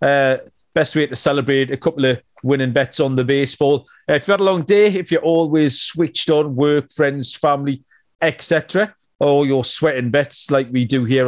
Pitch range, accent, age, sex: 130-155 Hz, British, 40-59, male